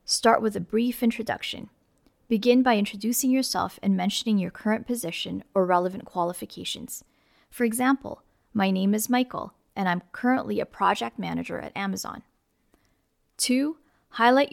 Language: English